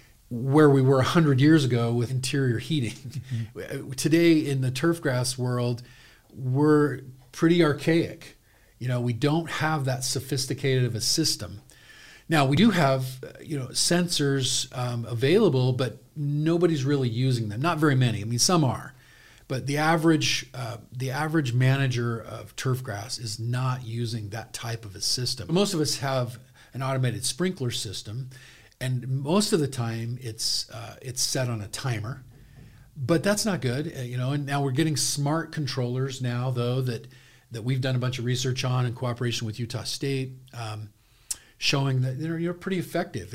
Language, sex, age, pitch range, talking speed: English, male, 40-59, 120-145 Hz, 170 wpm